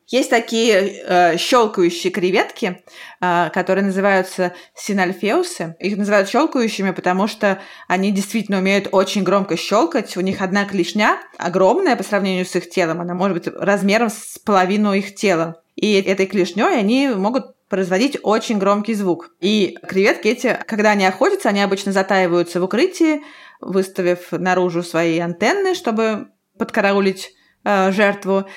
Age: 20-39